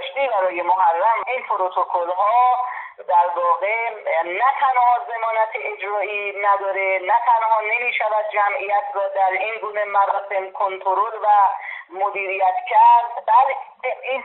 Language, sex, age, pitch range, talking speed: Persian, female, 40-59, 185-245 Hz, 115 wpm